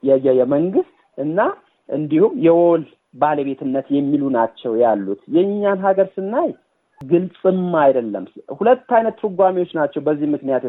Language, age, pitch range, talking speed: Amharic, 40-59, 145-200 Hz, 110 wpm